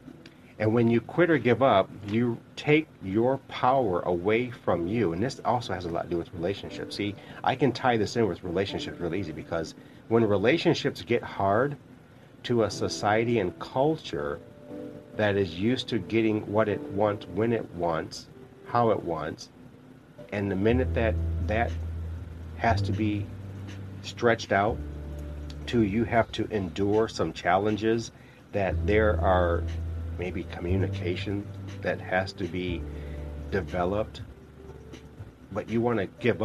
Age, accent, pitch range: 40-59, American, 85-115 Hz